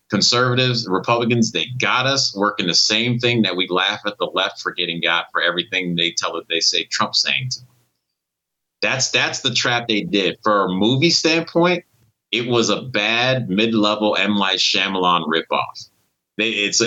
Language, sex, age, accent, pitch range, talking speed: English, male, 30-49, American, 105-130 Hz, 175 wpm